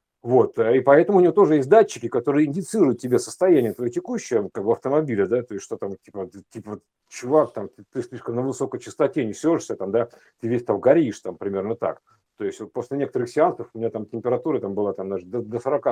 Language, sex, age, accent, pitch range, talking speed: Russian, male, 50-69, native, 120-190 Hz, 215 wpm